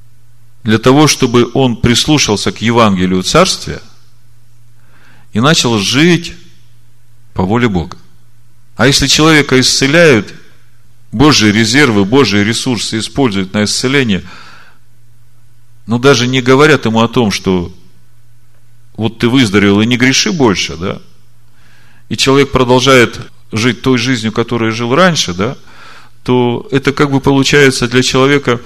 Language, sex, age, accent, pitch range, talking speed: Russian, male, 40-59, native, 115-125 Hz, 120 wpm